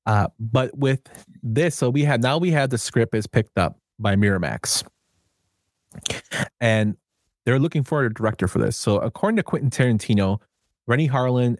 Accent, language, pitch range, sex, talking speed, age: American, English, 100-130 Hz, male, 165 wpm, 30-49